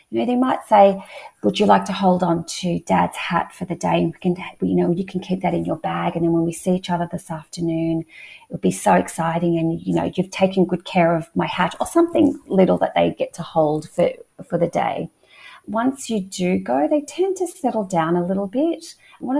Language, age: English, 30-49